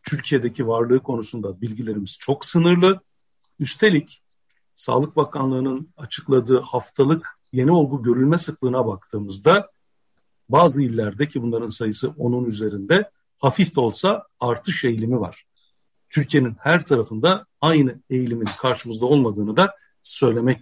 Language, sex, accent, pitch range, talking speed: Turkish, male, native, 125-160 Hz, 110 wpm